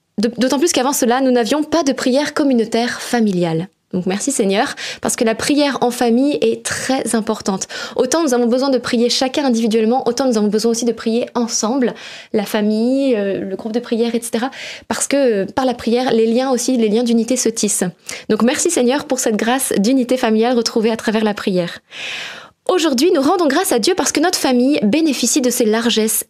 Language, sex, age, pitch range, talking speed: French, female, 20-39, 225-280 Hz, 195 wpm